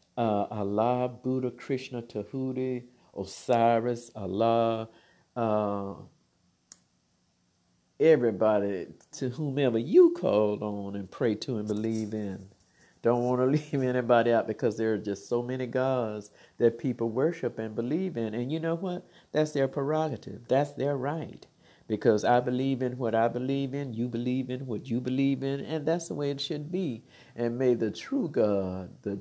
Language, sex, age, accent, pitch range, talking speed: English, male, 50-69, American, 105-135 Hz, 160 wpm